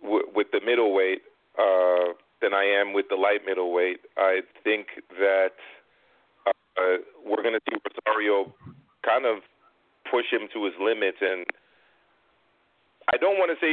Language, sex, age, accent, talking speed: English, male, 40-59, American, 155 wpm